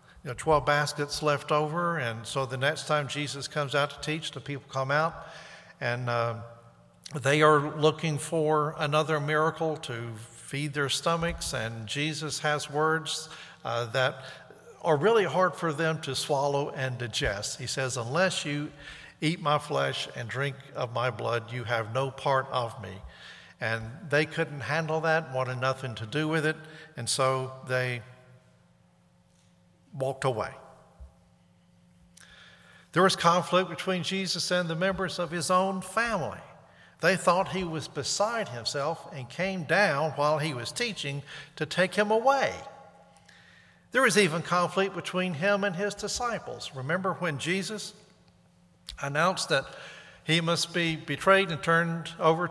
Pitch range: 130-170 Hz